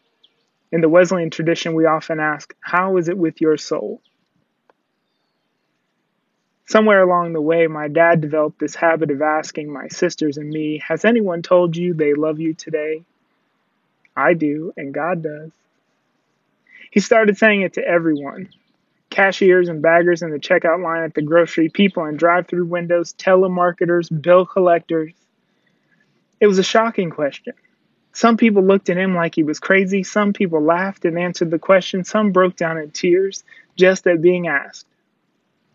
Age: 20-39